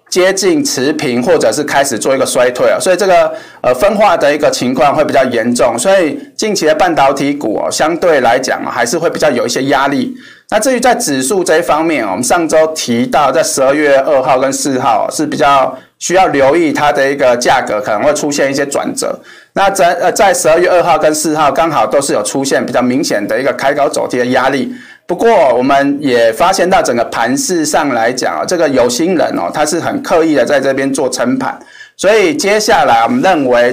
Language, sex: Chinese, male